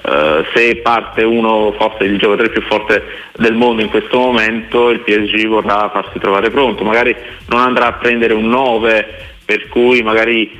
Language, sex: Italian, male